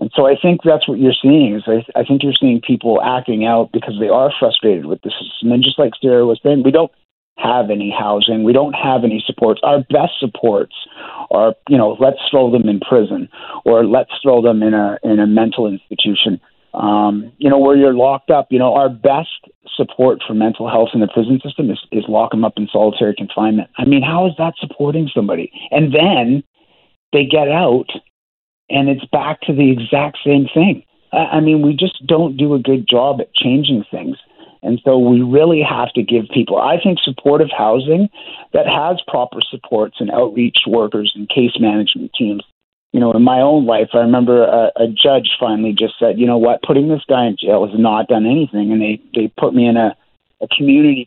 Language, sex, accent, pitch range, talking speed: English, male, American, 115-145 Hz, 210 wpm